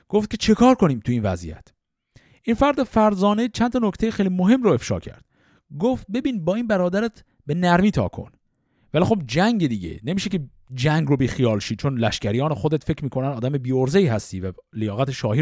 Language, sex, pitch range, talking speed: Persian, male, 120-185 Hz, 200 wpm